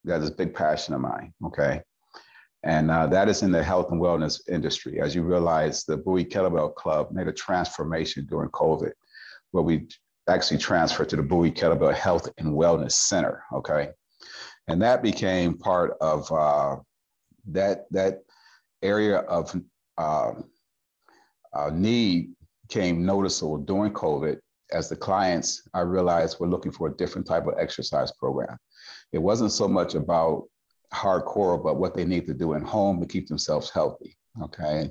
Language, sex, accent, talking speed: English, male, American, 160 wpm